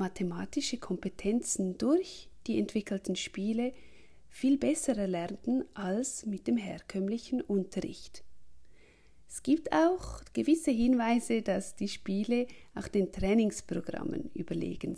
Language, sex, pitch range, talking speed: German, female, 180-255 Hz, 105 wpm